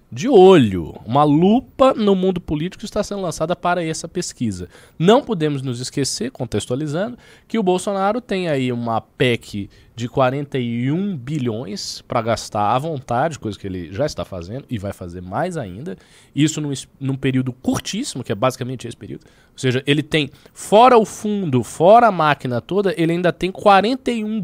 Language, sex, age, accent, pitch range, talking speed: Portuguese, male, 20-39, Brazilian, 120-175 Hz, 165 wpm